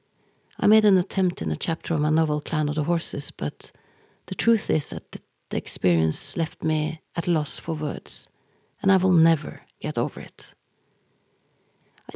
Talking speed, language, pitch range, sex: 175 wpm, English, 150-190 Hz, female